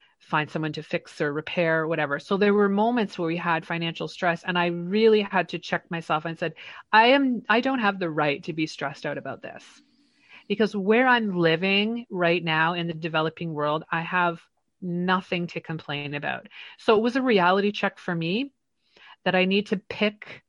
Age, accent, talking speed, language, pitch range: 30-49, American, 200 wpm, English, 165-200 Hz